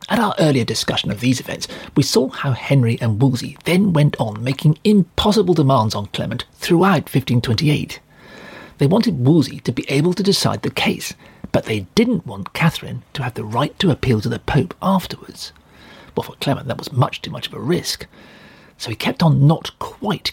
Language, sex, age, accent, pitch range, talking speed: English, male, 40-59, British, 130-195 Hz, 190 wpm